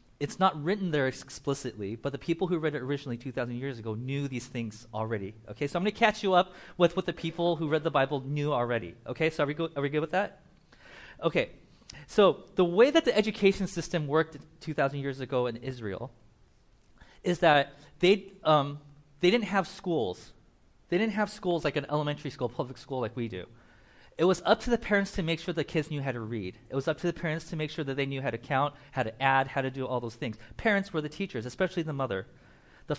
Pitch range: 125-170 Hz